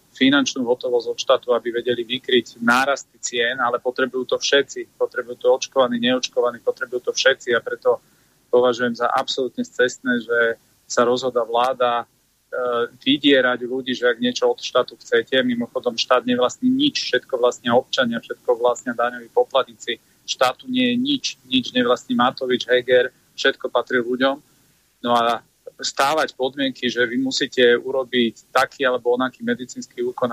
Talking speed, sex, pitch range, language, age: 145 wpm, male, 120-170 Hz, Slovak, 30-49